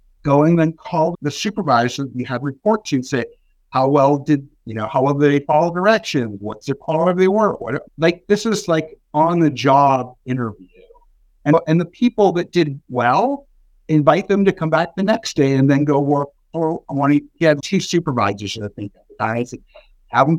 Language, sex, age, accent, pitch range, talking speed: English, male, 60-79, American, 120-160 Hz, 205 wpm